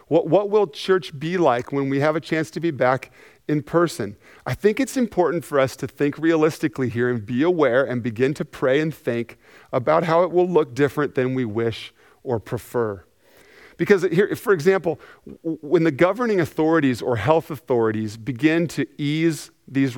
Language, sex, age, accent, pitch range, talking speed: English, male, 40-59, American, 130-175 Hz, 185 wpm